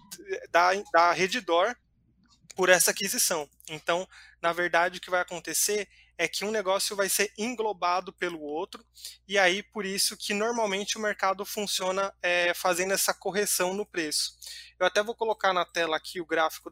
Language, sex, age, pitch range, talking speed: Portuguese, male, 20-39, 170-200 Hz, 160 wpm